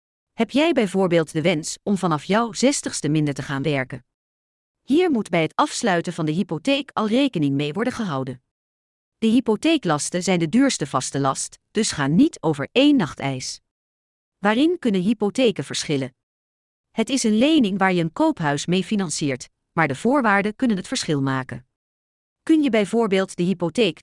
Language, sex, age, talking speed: English, female, 40-59, 165 wpm